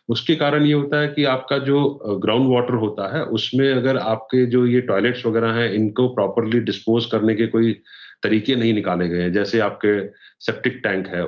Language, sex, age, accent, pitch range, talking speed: Hindi, male, 30-49, native, 100-120 Hz, 185 wpm